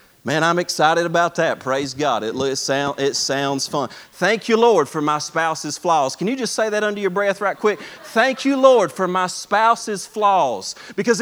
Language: English